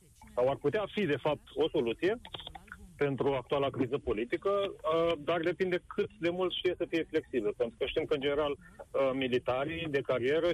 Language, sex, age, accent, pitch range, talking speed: Romanian, male, 30-49, native, 135-175 Hz, 170 wpm